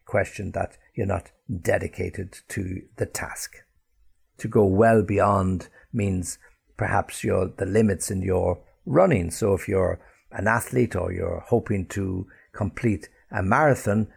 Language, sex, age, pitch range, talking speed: English, male, 60-79, 95-110 Hz, 135 wpm